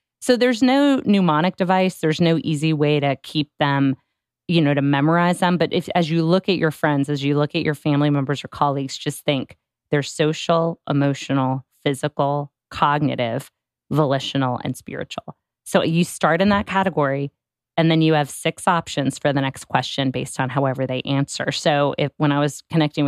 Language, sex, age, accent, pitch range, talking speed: English, female, 30-49, American, 140-170 Hz, 185 wpm